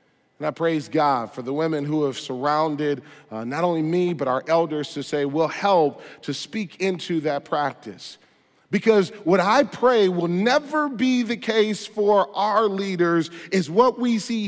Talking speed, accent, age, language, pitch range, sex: 175 wpm, American, 40-59, English, 125-200 Hz, male